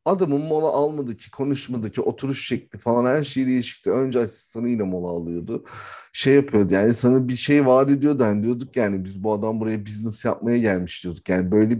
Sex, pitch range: male, 105-140 Hz